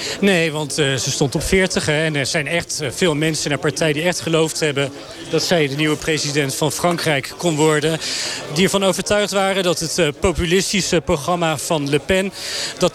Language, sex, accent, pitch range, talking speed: Dutch, male, Dutch, 155-185 Hz, 185 wpm